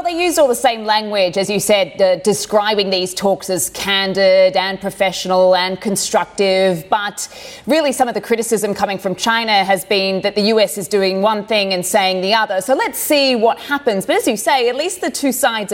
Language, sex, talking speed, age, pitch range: English, female, 215 wpm, 20-39, 195-230 Hz